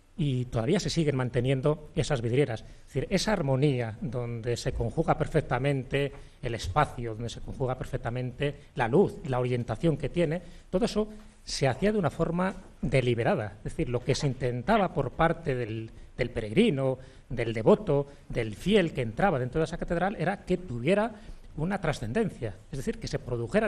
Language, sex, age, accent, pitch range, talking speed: English, male, 40-59, Spanish, 125-185 Hz, 165 wpm